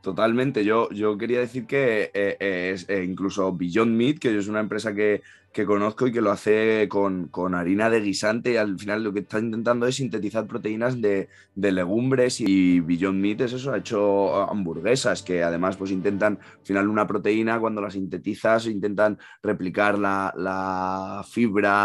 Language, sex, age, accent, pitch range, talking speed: Spanish, male, 20-39, Spanish, 95-105 Hz, 180 wpm